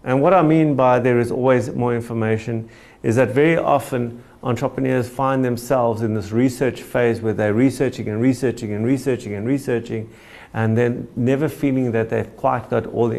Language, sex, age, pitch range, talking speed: English, male, 50-69, 100-130 Hz, 180 wpm